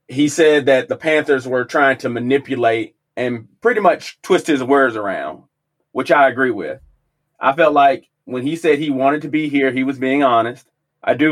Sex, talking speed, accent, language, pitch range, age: male, 195 wpm, American, English, 135-170 Hz, 30-49